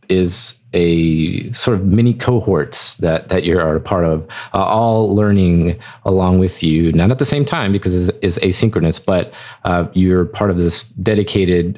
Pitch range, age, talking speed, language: 85-110 Hz, 30-49, 180 wpm, English